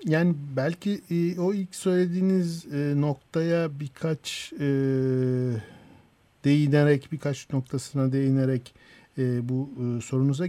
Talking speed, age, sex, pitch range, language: 75 wpm, 50-69, male, 125-165 Hz, Turkish